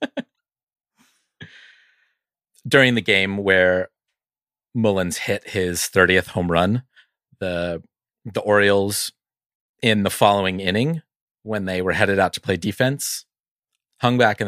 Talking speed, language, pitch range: 115 wpm, English, 90-110 Hz